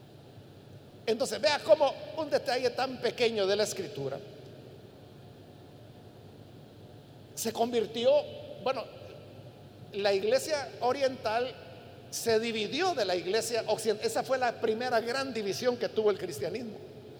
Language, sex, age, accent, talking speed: Spanish, male, 50-69, Mexican, 110 wpm